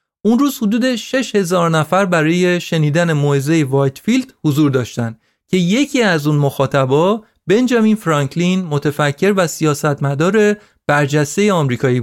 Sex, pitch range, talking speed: male, 140-195 Hz, 125 wpm